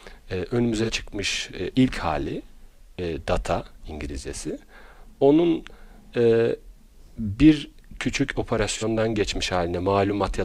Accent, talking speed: native, 105 wpm